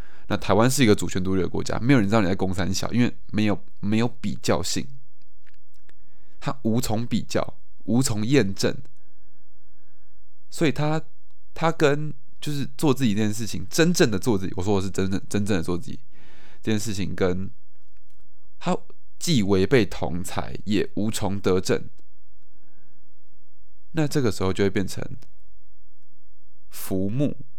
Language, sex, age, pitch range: Chinese, male, 20-39, 95-120 Hz